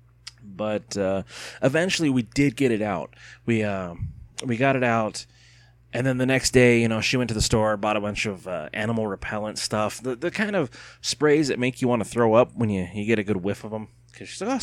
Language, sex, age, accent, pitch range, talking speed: English, male, 30-49, American, 105-125 Hz, 240 wpm